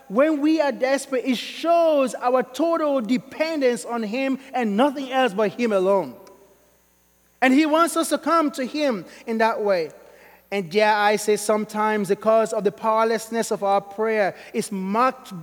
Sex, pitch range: male, 215-285 Hz